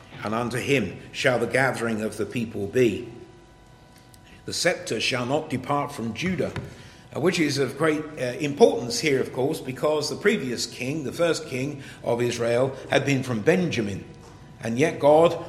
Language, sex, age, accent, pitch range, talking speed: English, male, 50-69, British, 120-150 Hz, 165 wpm